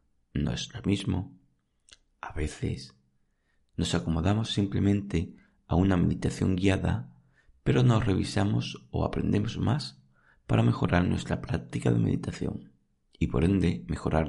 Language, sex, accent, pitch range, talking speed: Spanish, male, Spanish, 65-100 Hz, 120 wpm